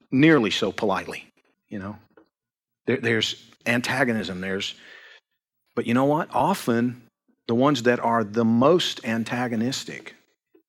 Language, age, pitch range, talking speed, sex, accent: English, 50-69, 110-130 Hz, 120 wpm, male, American